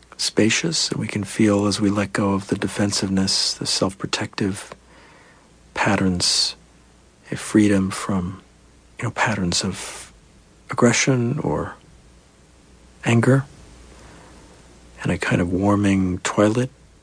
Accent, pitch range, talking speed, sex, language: American, 90-110 Hz, 115 wpm, male, English